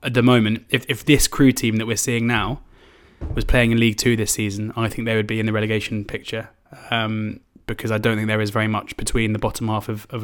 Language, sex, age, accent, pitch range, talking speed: English, male, 20-39, British, 110-120 Hz, 250 wpm